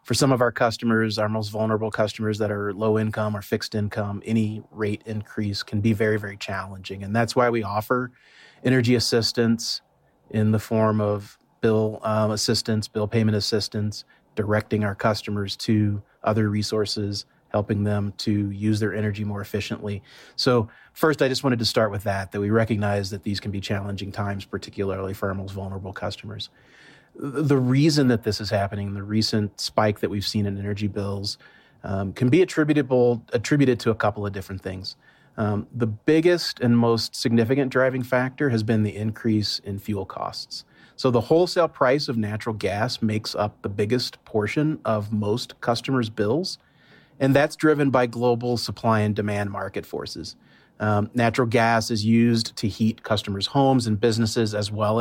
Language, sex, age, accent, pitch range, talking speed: English, male, 30-49, American, 105-120 Hz, 175 wpm